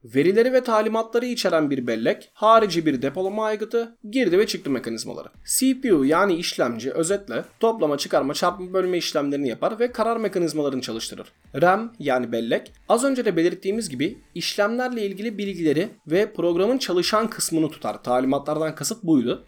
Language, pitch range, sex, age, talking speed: Turkish, 145-220 Hz, male, 30-49, 145 wpm